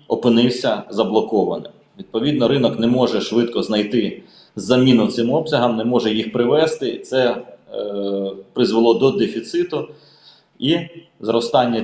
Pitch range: 110-135 Hz